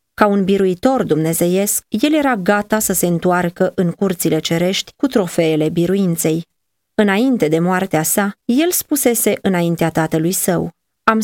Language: Romanian